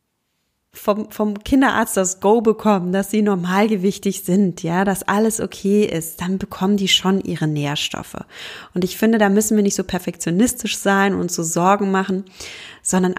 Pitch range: 180-215 Hz